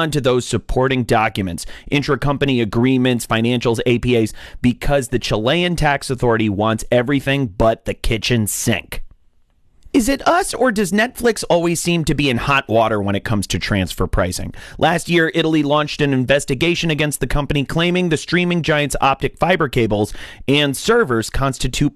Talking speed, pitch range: 155 wpm, 105-145 Hz